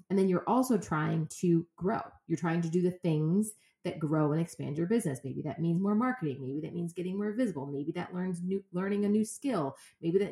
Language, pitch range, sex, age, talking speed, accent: English, 150-205 Hz, female, 30-49, 235 wpm, American